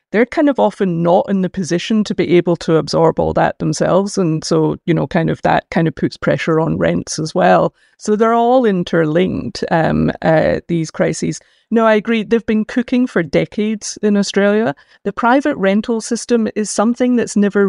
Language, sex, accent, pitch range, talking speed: English, female, British, 170-215 Hz, 195 wpm